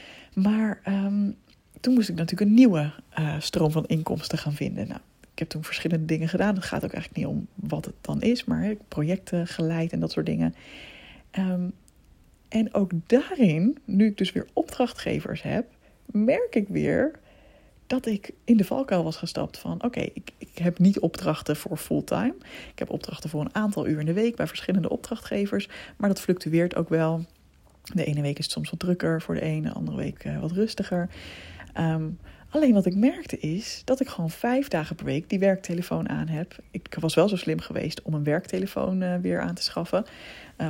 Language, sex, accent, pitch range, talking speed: Dutch, female, Dutch, 155-200 Hz, 200 wpm